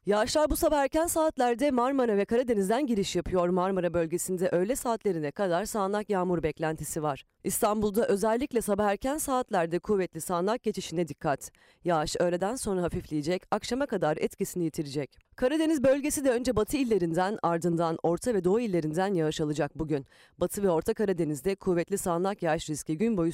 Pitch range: 165-225 Hz